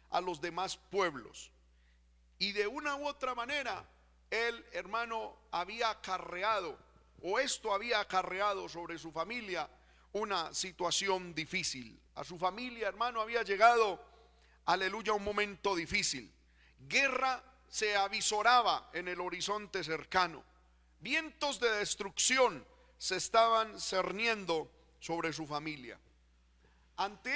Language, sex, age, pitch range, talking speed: Spanish, male, 40-59, 145-220 Hz, 110 wpm